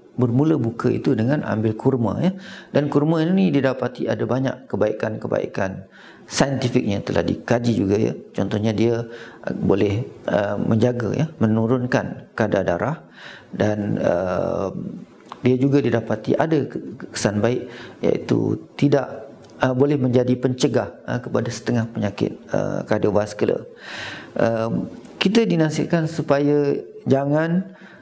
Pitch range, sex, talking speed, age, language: 110-140 Hz, male, 115 wpm, 40-59, Malay